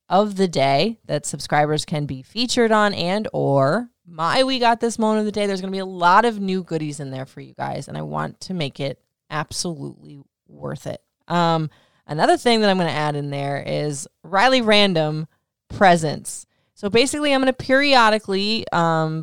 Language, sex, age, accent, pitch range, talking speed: English, female, 20-39, American, 155-205 Hz, 185 wpm